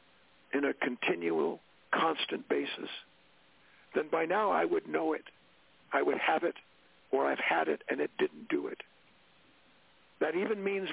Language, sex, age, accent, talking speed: English, male, 50-69, American, 155 wpm